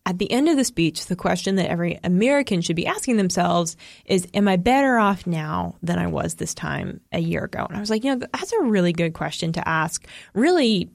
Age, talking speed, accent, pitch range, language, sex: 20-39, 235 wpm, American, 170-230 Hz, English, female